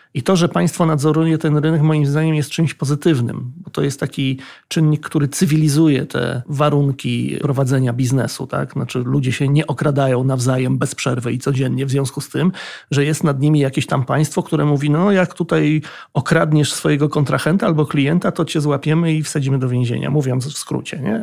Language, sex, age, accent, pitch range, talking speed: Polish, male, 40-59, native, 135-155 Hz, 185 wpm